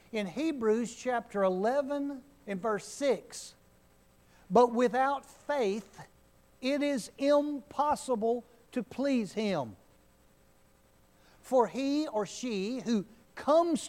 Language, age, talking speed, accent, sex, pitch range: English, 60-79, 95 wpm, American, male, 170-265 Hz